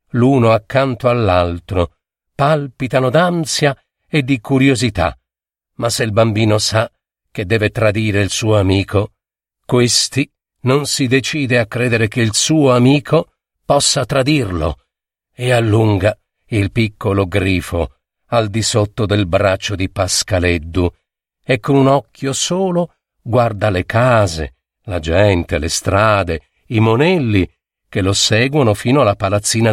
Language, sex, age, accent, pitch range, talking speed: Italian, male, 50-69, native, 100-140 Hz, 125 wpm